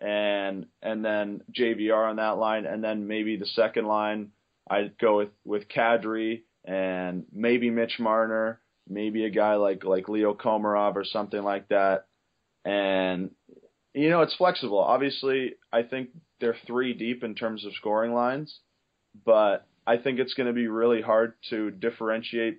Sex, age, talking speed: male, 20-39, 160 wpm